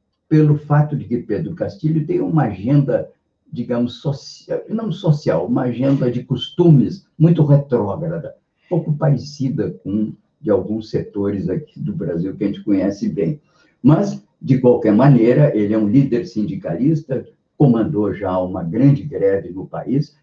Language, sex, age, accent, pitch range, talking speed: Portuguese, male, 60-79, Brazilian, 115-155 Hz, 150 wpm